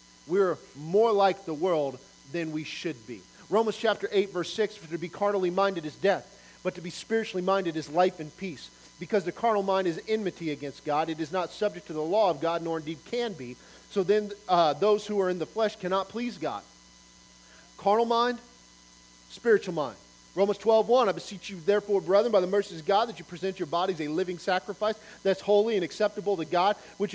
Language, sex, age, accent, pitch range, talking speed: English, male, 40-59, American, 170-210 Hz, 210 wpm